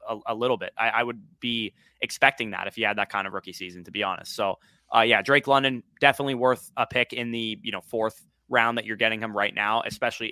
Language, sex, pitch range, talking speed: English, male, 110-130 Hz, 250 wpm